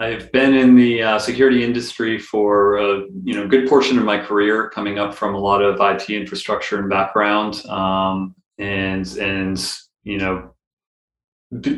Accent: American